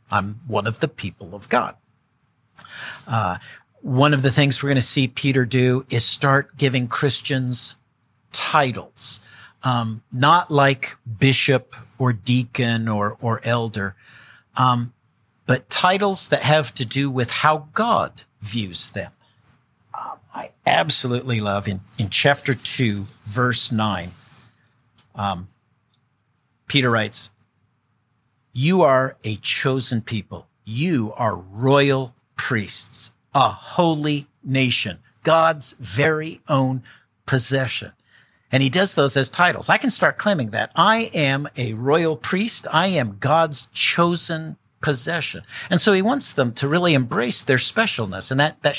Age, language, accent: 50-69, English, American